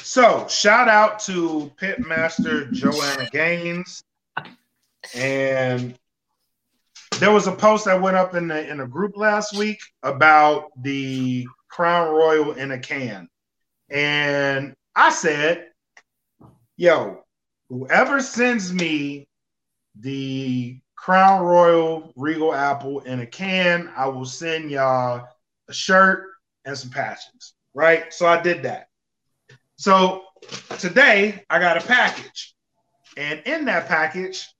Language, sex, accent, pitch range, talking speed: English, male, American, 140-190 Hz, 120 wpm